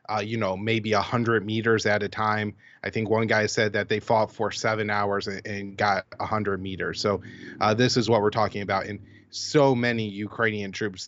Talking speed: 205 wpm